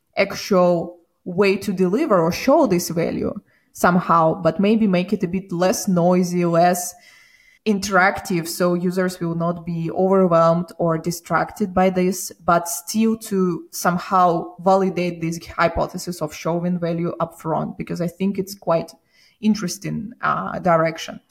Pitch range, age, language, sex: 170-195 Hz, 20-39, English, female